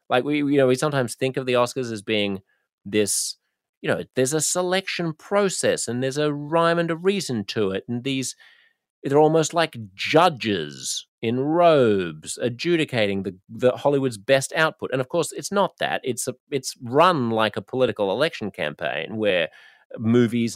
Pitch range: 100-135 Hz